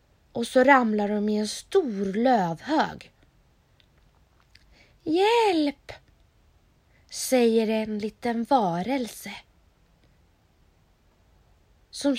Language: English